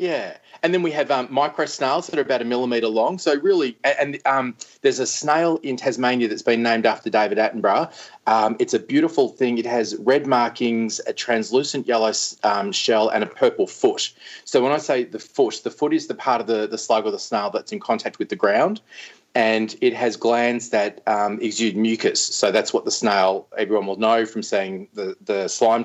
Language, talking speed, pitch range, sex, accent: English, 215 wpm, 105-135 Hz, male, Australian